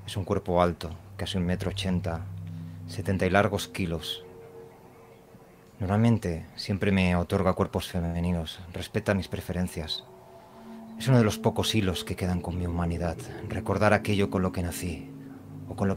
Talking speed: 155 wpm